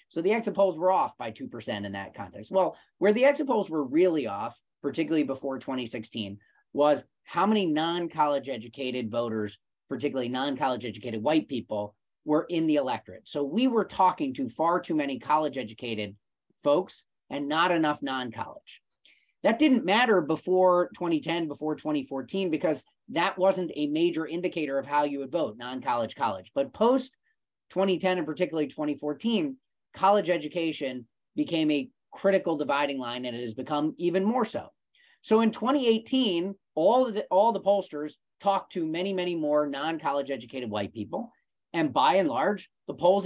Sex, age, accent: male, 30-49, American